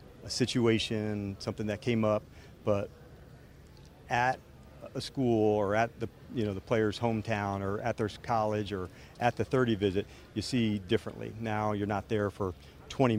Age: 40-59